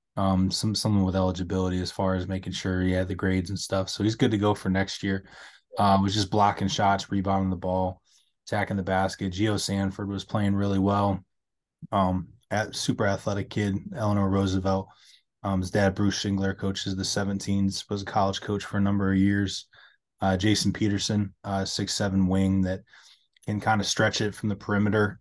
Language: English